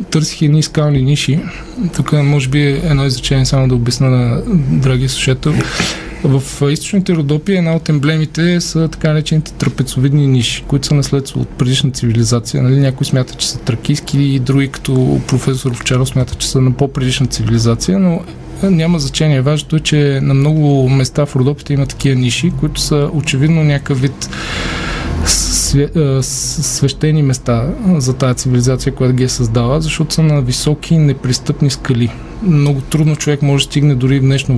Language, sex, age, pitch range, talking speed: Bulgarian, male, 20-39, 135-155 Hz, 160 wpm